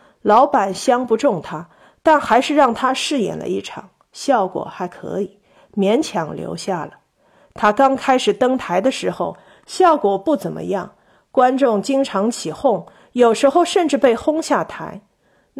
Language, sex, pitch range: Chinese, female, 200-270 Hz